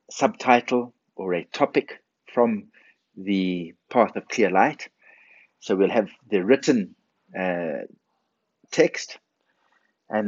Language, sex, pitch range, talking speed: English, male, 100-140 Hz, 105 wpm